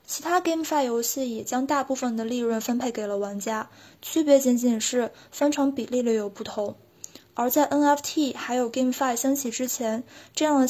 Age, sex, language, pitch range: 20-39, female, Chinese, 235-280 Hz